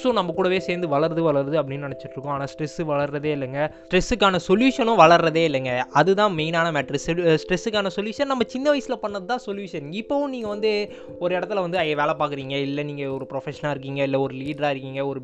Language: Tamil